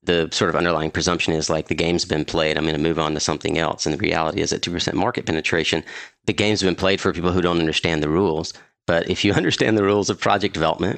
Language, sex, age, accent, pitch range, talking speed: English, male, 40-59, American, 80-100 Hz, 255 wpm